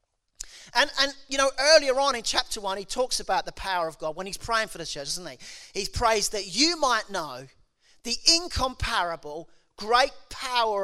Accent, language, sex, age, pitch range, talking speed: British, English, male, 40-59, 195-275 Hz, 190 wpm